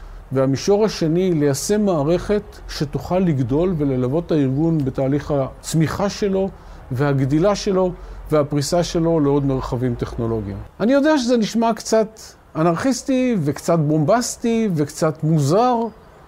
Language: Hebrew